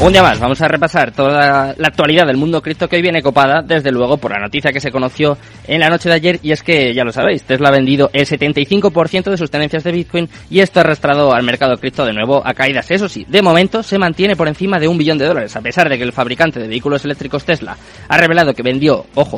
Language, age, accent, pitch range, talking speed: Spanish, 20-39, Spanish, 130-170 Hz, 260 wpm